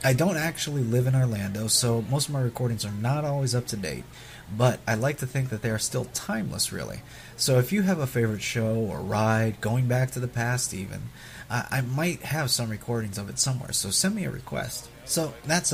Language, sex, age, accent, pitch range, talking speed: English, male, 30-49, American, 110-135 Hz, 225 wpm